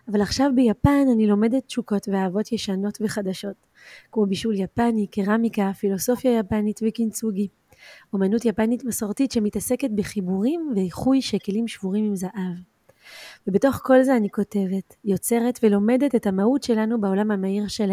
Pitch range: 200-235 Hz